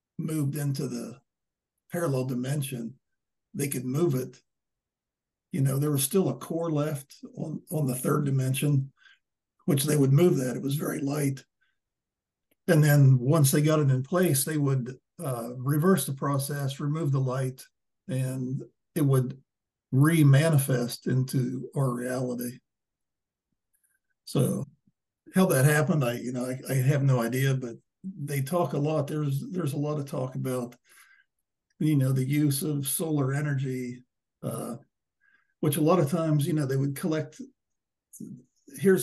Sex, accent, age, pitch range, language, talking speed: male, American, 50-69, 130-155 Hz, English, 150 wpm